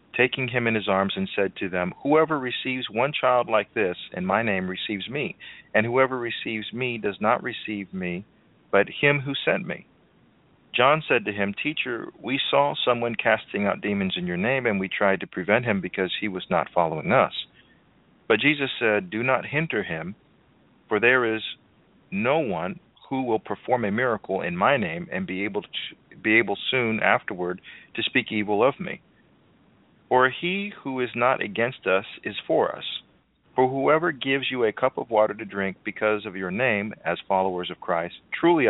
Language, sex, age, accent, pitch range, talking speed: English, male, 40-59, American, 100-130 Hz, 190 wpm